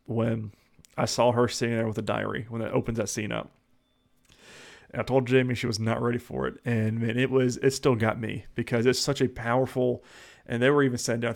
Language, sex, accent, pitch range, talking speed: English, male, American, 115-130 Hz, 240 wpm